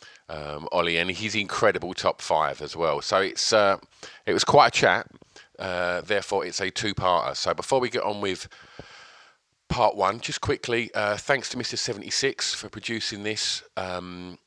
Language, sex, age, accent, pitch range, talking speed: English, male, 40-59, British, 90-110 Hz, 170 wpm